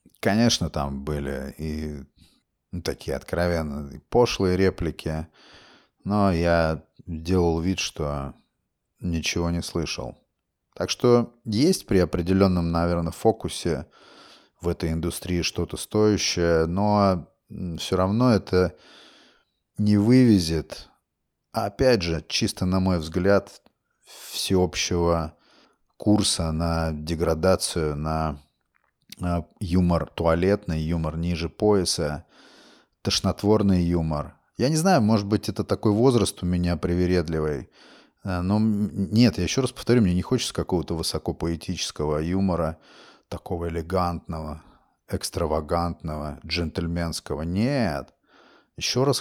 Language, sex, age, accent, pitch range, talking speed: Russian, male, 30-49, native, 80-100 Hz, 100 wpm